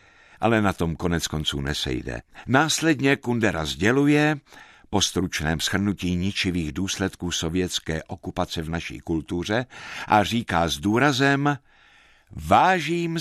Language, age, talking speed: Czech, 60-79, 110 wpm